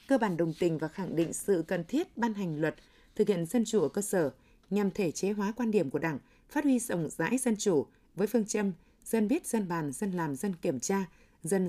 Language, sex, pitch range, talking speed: Vietnamese, female, 180-235 Hz, 240 wpm